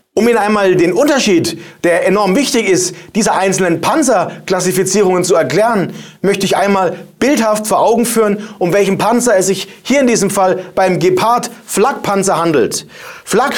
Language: German